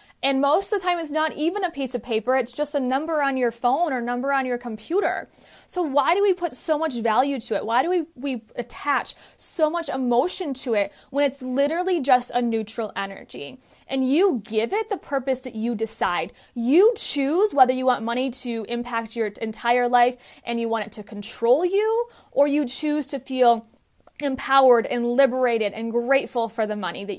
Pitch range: 225-290 Hz